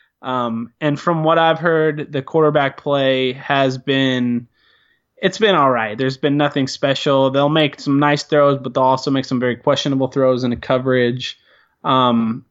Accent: American